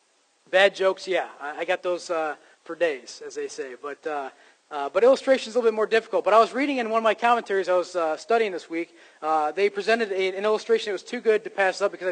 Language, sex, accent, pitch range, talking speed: English, male, American, 190-240 Hz, 255 wpm